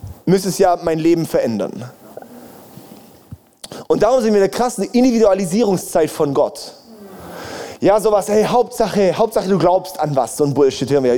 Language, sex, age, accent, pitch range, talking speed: German, male, 20-39, German, 165-205 Hz, 160 wpm